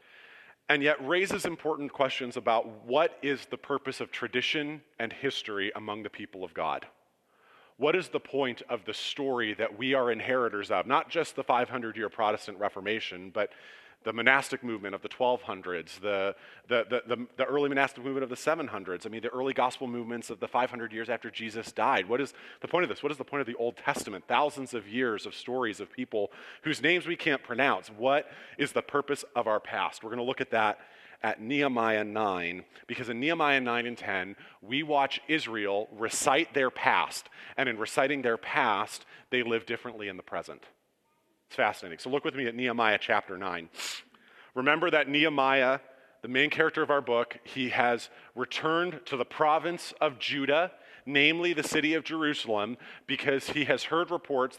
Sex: male